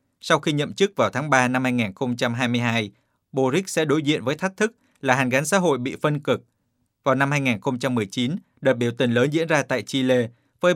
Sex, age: male, 20-39